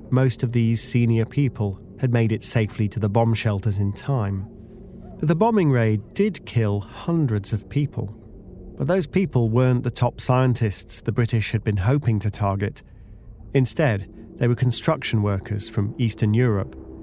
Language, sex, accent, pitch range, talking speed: English, male, British, 100-130 Hz, 160 wpm